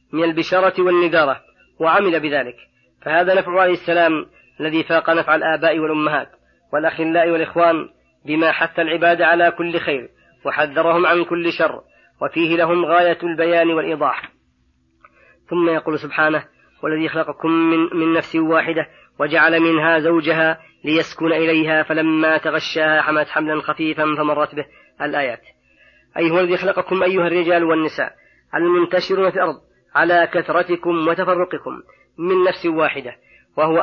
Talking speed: 125 wpm